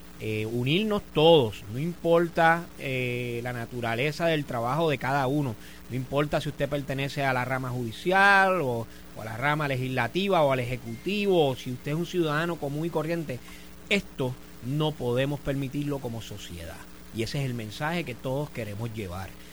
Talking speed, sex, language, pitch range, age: 170 wpm, male, Spanish, 125-175 Hz, 30-49